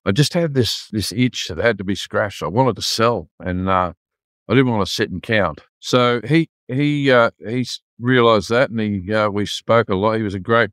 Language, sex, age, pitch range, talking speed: English, male, 50-69, 95-115 Hz, 235 wpm